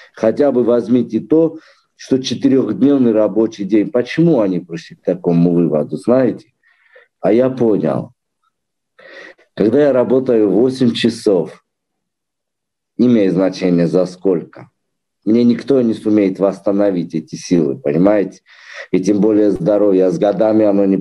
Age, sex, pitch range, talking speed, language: 50-69, male, 90-120 Hz, 130 wpm, Russian